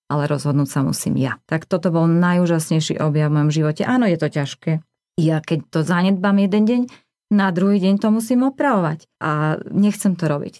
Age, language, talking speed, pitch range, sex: 30-49, Slovak, 185 wpm, 155-195 Hz, female